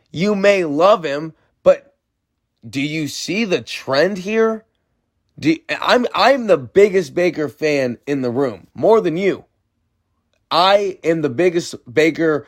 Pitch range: 115-165 Hz